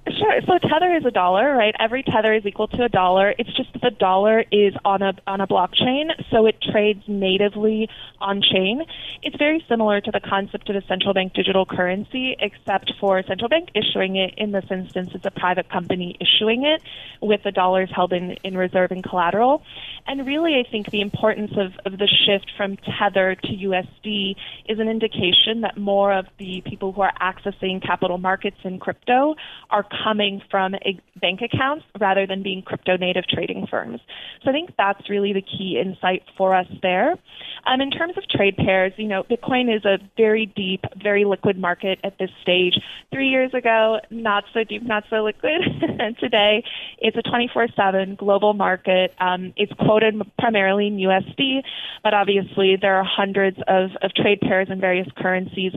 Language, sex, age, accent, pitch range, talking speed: English, female, 20-39, American, 190-220 Hz, 185 wpm